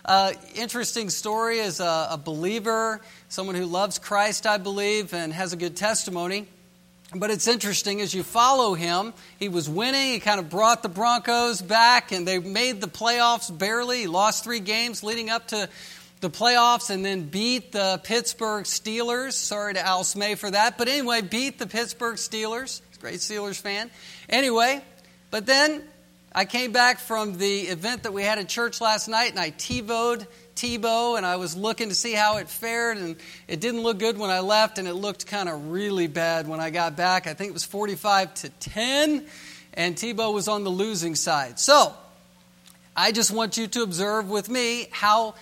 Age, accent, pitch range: 50-69, American, 185-230 Hz